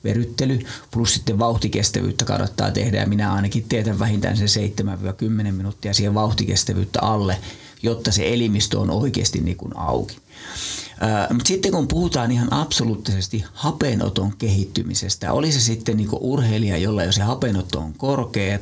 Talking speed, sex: 140 wpm, male